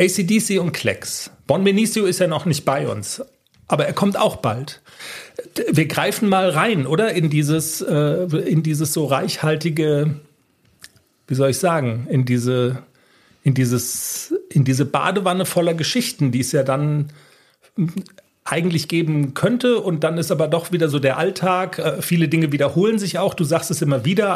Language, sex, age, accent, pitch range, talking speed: German, male, 40-59, German, 135-180 Hz, 170 wpm